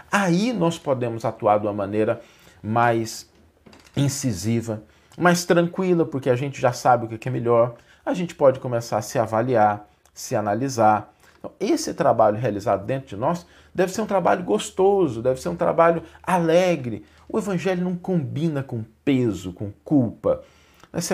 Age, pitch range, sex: 40-59, 110-175 Hz, male